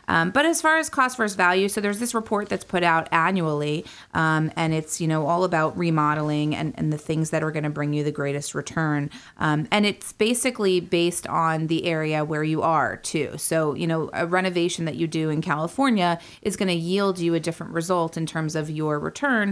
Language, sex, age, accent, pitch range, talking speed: English, female, 30-49, American, 155-180 Hz, 220 wpm